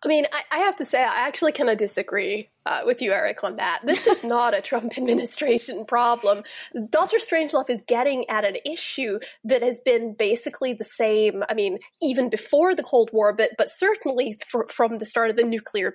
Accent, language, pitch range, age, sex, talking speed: American, English, 230-295 Hz, 20-39, female, 200 wpm